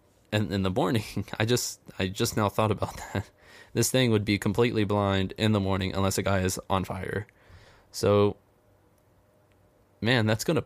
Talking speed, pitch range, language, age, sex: 180 wpm, 95-110 Hz, English, 20-39, male